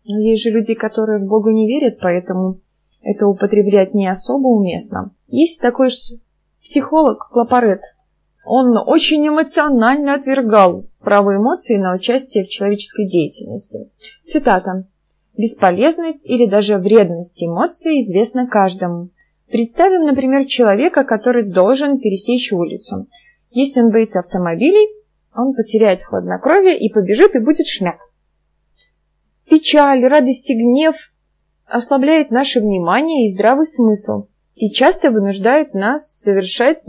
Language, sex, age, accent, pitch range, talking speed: Russian, female, 20-39, native, 200-275 Hz, 120 wpm